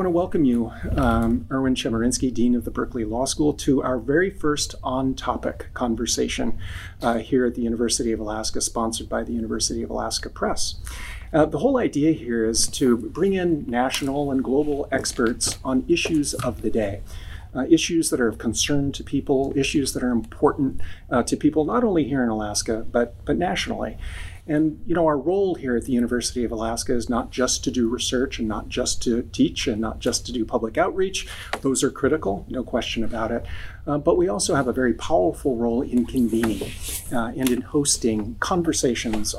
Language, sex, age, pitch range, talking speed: English, male, 40-59, 115-140 Hz, 190 wpm